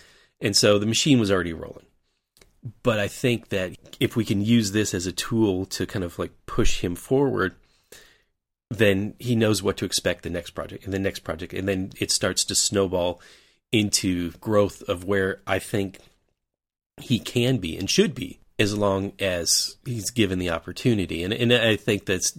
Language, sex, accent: English, male, American